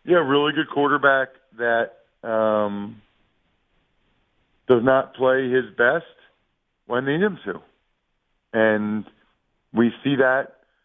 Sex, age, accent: male, 40-59, American